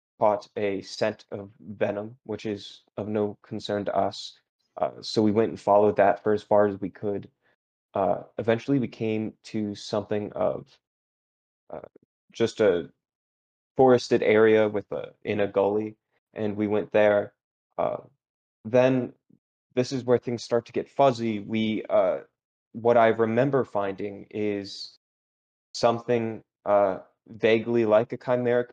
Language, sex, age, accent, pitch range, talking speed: English, male, 20-39, American, 105-120 Hz, 145 wpm